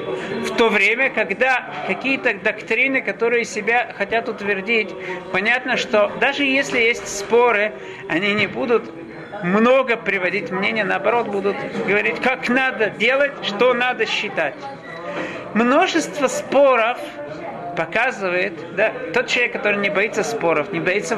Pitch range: 195-245 Hz